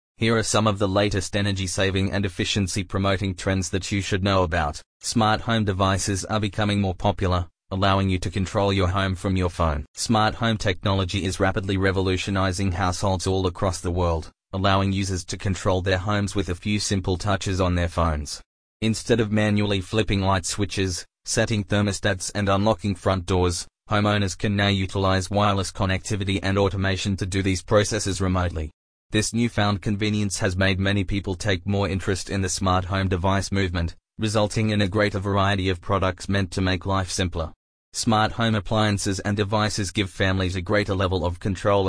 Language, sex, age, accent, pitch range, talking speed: English, male, 20-39, Australian, 95-105 Hz, 175 wpm